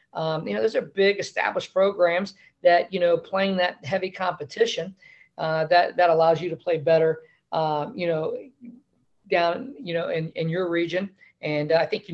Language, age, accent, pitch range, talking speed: English, 50-69, American, 155-175 Hz, 190 wpm